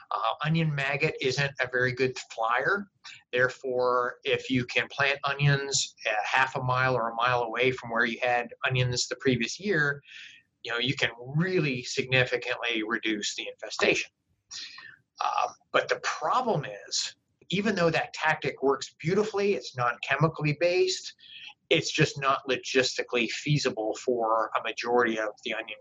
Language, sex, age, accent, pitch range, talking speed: English, male, 30-49, American, 125-165 Hz, 150 wpm